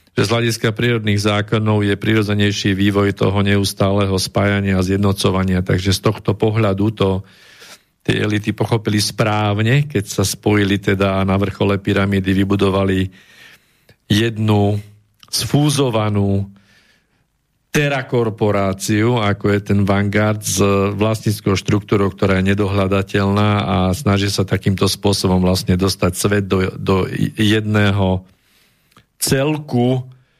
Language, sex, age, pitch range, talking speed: Slovak, male, 40-59, 100-115 Hz, 110 wpm